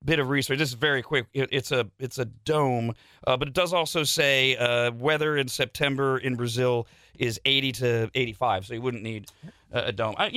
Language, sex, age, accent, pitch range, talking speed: English, male, 40-59, American, 135-180 Hz, 210 wpm